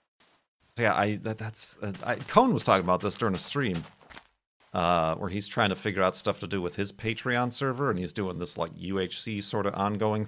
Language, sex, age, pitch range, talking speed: English, male, 40-59, 95-120 Hz, 210 wpm